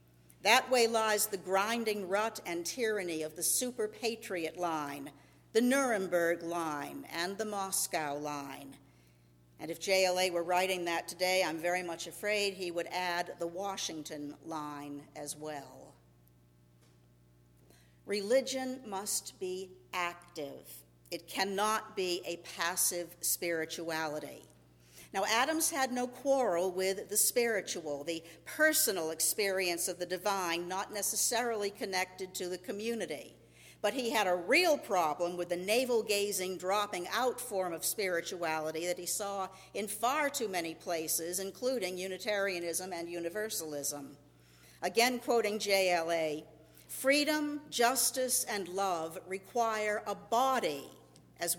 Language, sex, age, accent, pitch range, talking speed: English, female, 50-69, American, 160-210 Hz, 120 wpm